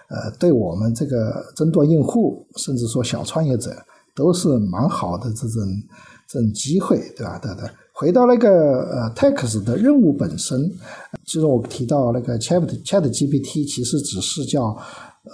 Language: Chinese